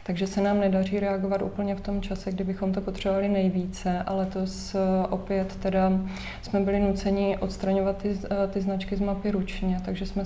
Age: 20-39